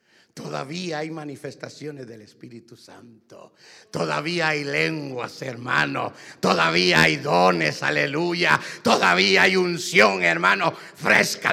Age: 50-69